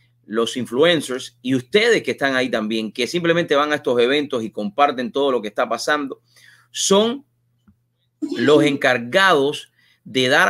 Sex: male